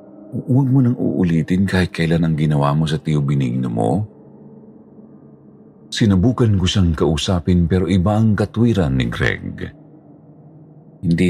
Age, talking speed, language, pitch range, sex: 50-69, 125 wpm, Filipino, 75-110 Hz, male